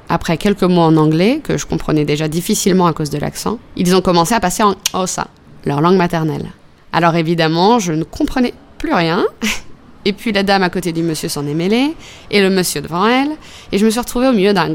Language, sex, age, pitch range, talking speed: French, female, 20-39, 160-210 Hz, 225 wpm